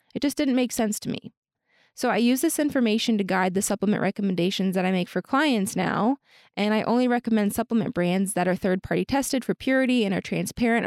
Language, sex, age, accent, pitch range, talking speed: English, female, 20-39, American, 190-230 Hz, 210 wpm